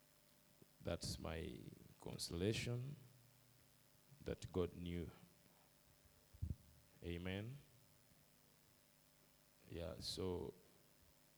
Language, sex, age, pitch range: English, male, 50-69, 100-145 Hz